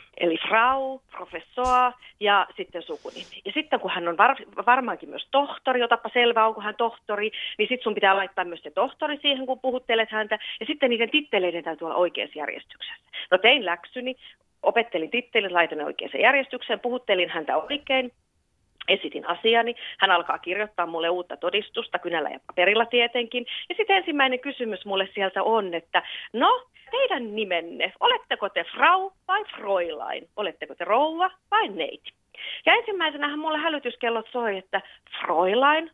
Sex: female